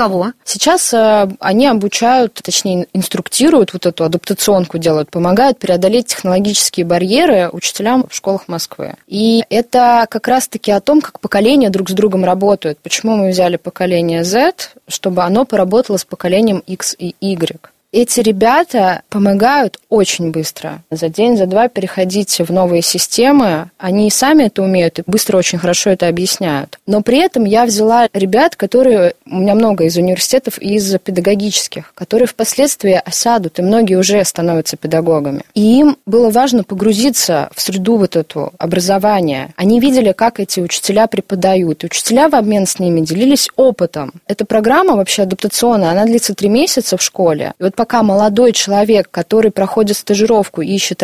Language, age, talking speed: Russian, 20-39, 155 wpm